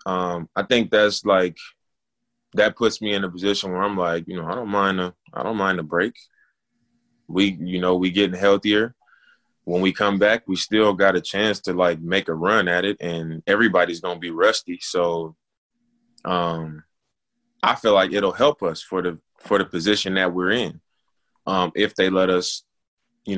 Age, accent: 20-39, American